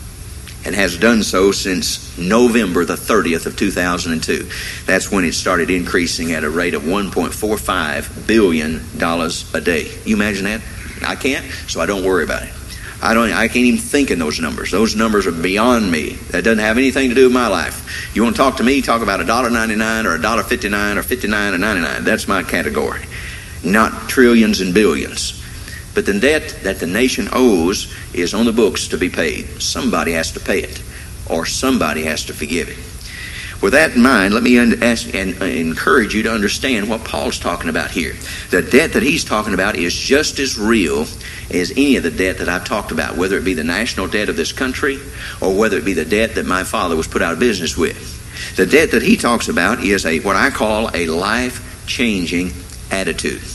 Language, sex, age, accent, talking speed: English, male, 50-69, American, 215 wpm